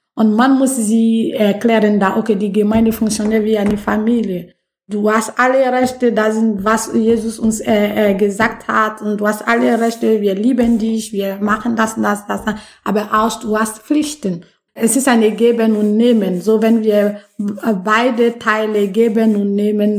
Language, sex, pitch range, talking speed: German, female, 205-240 Hz, 170 wpm